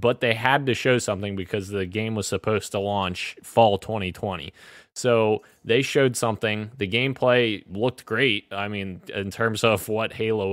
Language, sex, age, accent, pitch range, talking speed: English, male, 20-39, American, 95-115 Hz, 170 wpm